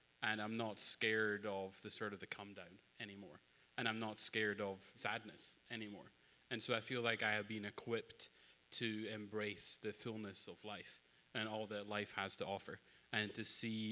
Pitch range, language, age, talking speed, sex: 105-120 Hz, English, 20-39, 190 wpm, male